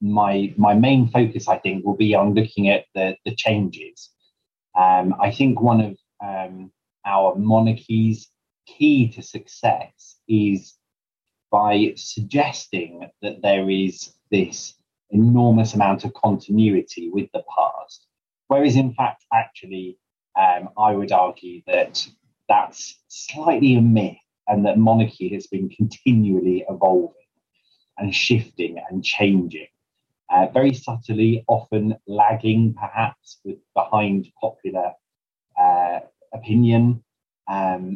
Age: 30-49